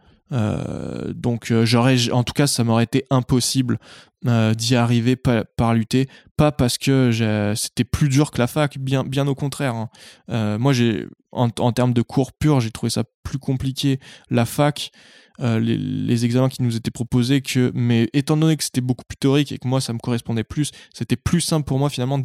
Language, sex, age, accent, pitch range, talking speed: French, male, 20-39, French, 115-140 Hz, 210 wpm